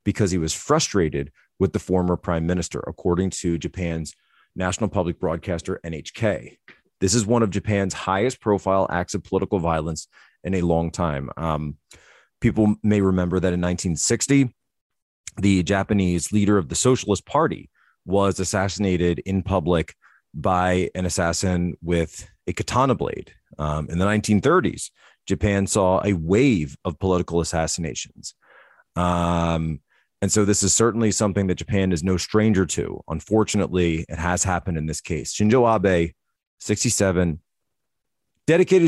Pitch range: 85-105 Hz